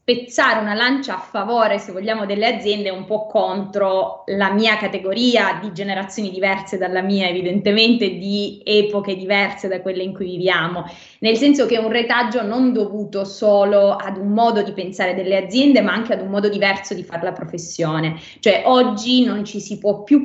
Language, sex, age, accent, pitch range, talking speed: Italian, female, 20-39, native, 190-225 Hz, 185 wpm